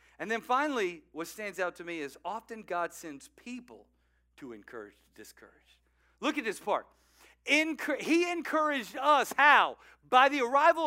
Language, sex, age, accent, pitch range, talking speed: English, male, 40-59, American, 200-255 Hz, 150 wpm